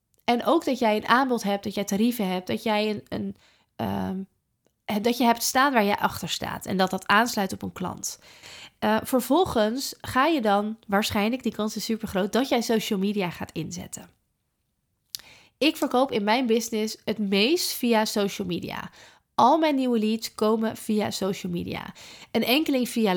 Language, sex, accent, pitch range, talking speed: Dutch, female, Dutch, 190-235 Hz, 180 wpm